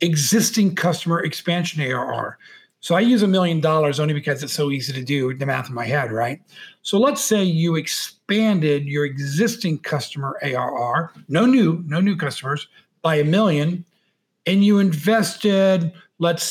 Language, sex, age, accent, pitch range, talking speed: English, male, 50-69, American, 150-195 Hz, 160 wpm